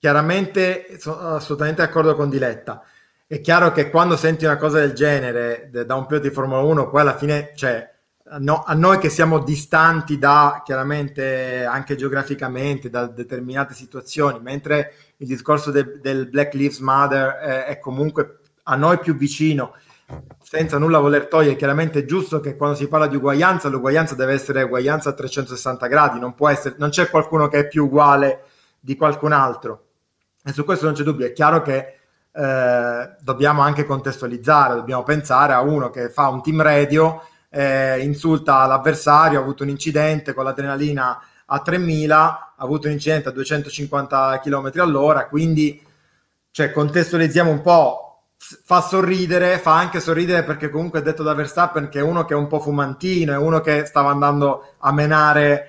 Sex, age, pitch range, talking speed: male, 30-49, 135-155 Hz, 170 wpm